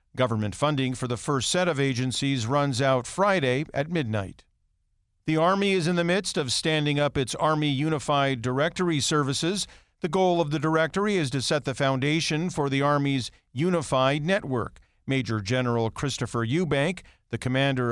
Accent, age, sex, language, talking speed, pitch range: American, 50-69, male, English, 160 wpm, 125-160 Hz